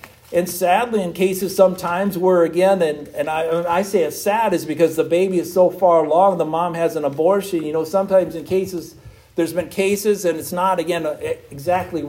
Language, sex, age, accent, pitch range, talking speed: English, male, 50-69, American, 130-185 Hz, 205 wpm